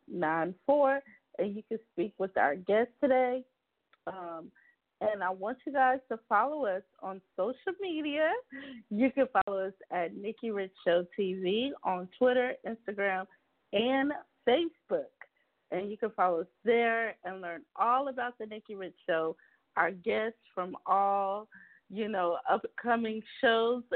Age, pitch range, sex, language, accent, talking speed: 40-59, 195-260 Hz, female, English, American, 145 wpm